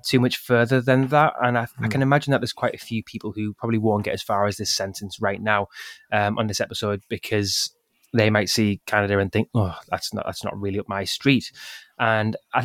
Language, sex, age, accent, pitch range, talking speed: English, male, 20-39, British, 105-115 Hz, 235 wpm